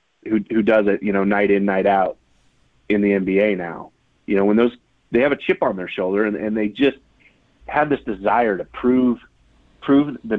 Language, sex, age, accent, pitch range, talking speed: English, male, 30-49, American, 105-130 Hz, 215 wpm